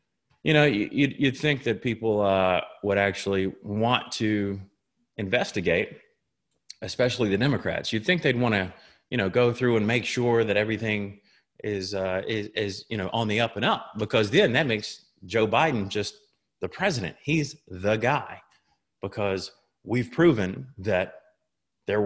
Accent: American